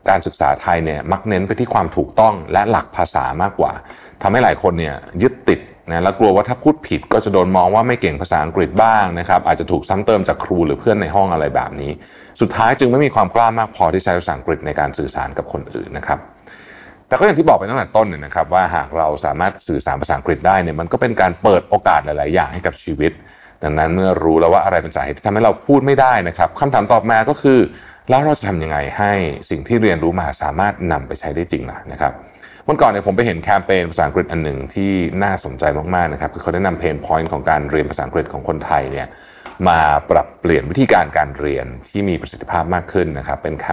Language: Thai